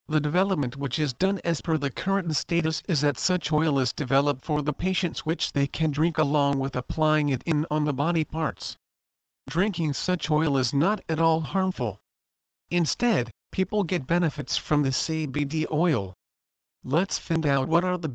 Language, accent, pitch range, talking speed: English, American, 135-165 Hz, 180 wpm